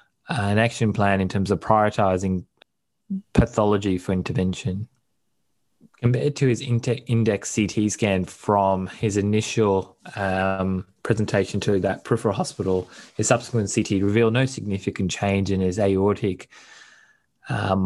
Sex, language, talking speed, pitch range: male, English, 120 wpm, 95-110 Hz